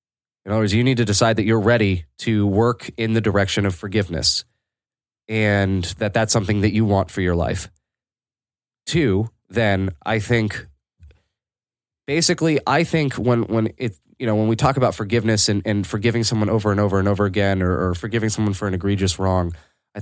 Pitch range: 100-120 Hz